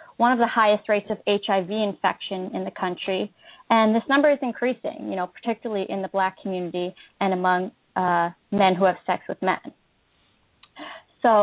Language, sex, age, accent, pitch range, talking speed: English, female, 20-39, American, 185-230 Hz, 175 wpm